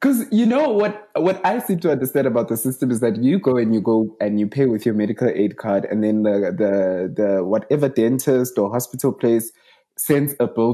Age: 20-39